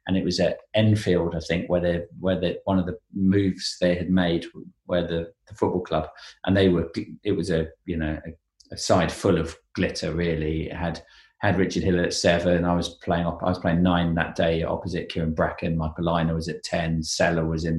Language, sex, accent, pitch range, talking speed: English, male, British, 85-95 Hz, 220 wpm